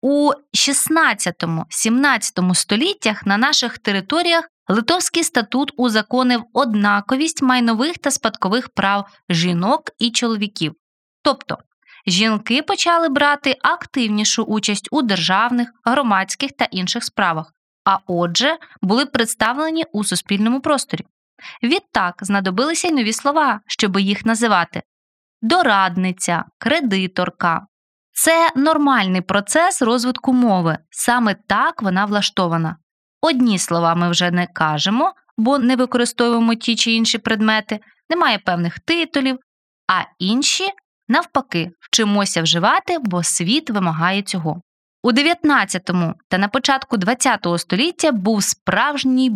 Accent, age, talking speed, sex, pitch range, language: native, 20-39, 110 wpm, female, 190-275 Hz, Ukrainian